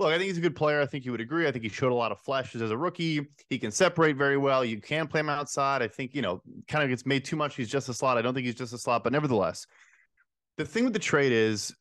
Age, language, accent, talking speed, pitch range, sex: 30-49, English, American, 315 wpm, 125-155 Hz, male